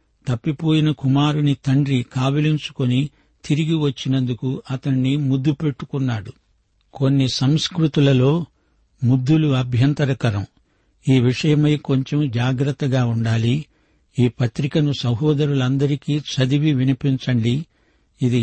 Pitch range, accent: 125-145 Hz, native